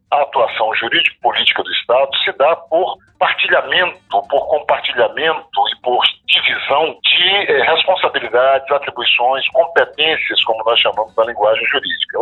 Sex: male